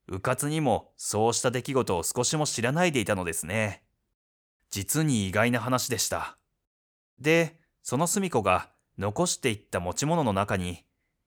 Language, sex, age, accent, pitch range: Japanese, male, 30-49, native, 100-150 Hz